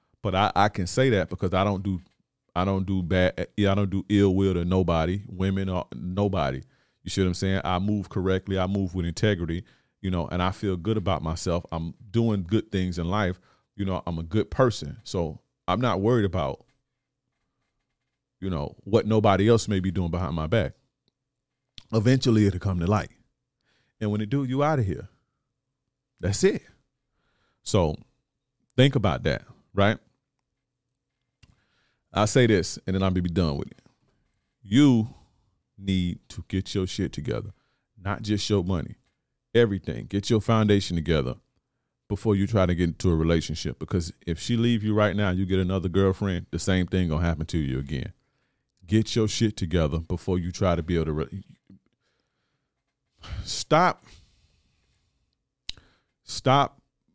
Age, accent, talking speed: 30-49, American, 165 wpm